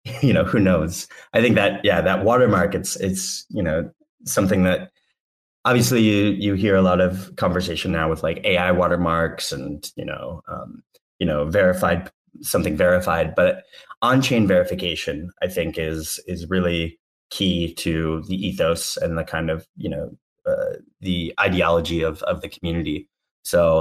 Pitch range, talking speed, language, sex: 85-100 Hz, 160 wpm, English, male